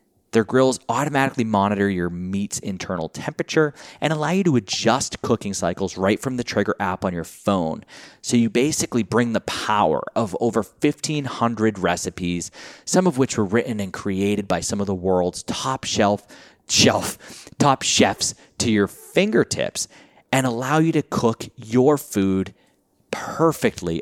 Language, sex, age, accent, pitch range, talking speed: English, male, 30-49, American, 95-130 Hz, 150 wpm